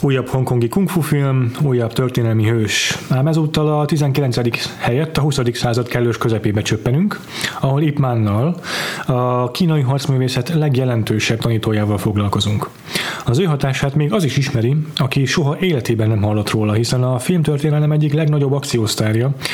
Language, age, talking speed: Hungarian, 30-49, 140 wpm